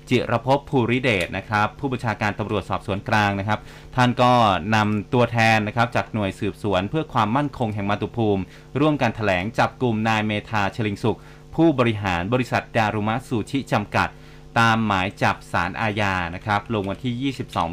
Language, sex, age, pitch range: Thai, male, 30-49, 105-130 Hz